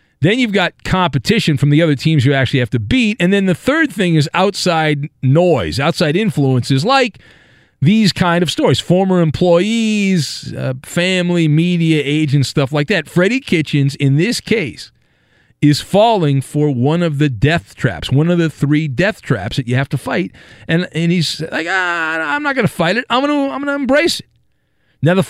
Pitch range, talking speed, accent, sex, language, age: 140-190 Hz, 185 wpm, American, male, English, 40-59